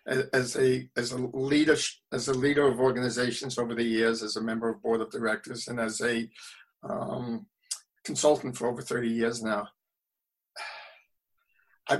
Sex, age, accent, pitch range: male, 50-69, American, 120-135 Hz